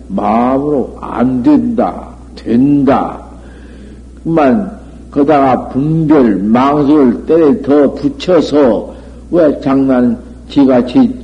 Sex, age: male, 60-79